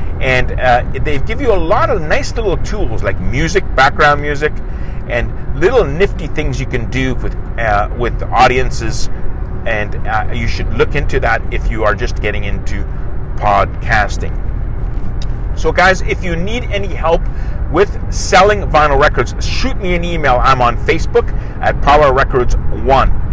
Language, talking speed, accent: English, 160 wpm, American